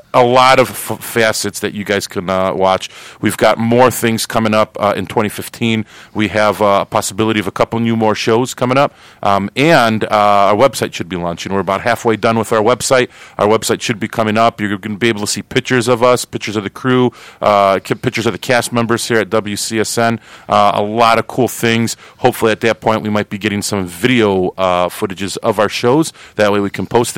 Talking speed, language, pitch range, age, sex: 225 wpm, English, 100-120 Hz, 40-59, male